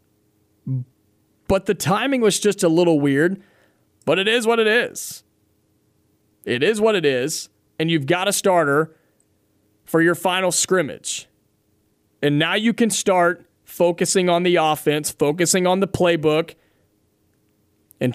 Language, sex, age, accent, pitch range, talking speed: English, male, 30-49, American, 135-185 Hz, 140 wpm